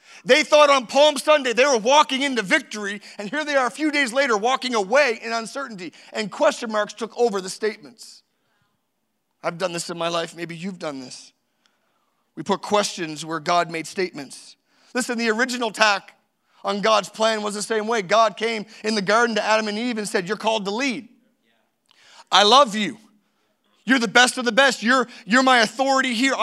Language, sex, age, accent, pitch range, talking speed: English, male, 40-59, American, 215-270 Hz, 195 wpm